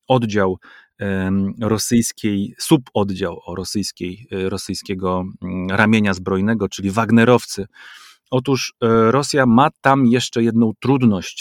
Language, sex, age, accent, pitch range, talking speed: Polish, male, 30-49, native, 100-125 Hz, 80 wpm